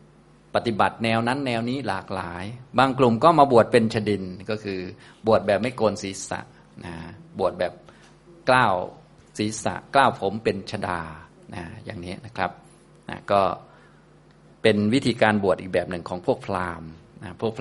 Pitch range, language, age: 95-120 Hz, Thai, 20-39